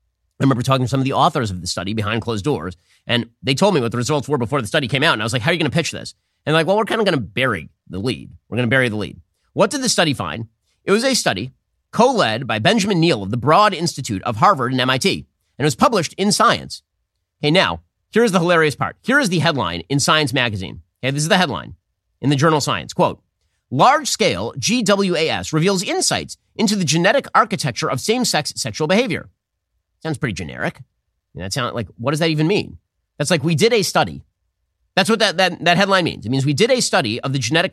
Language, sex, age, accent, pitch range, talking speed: English, male, 30-49, American, 115-180 Hz, 245 wpm